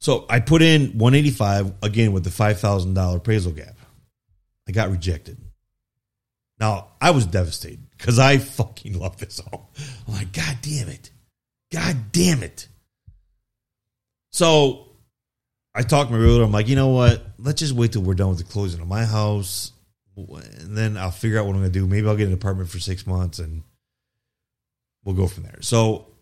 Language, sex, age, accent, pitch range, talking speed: English, male, 30-49, American, 95-120 Hz, 180 wpm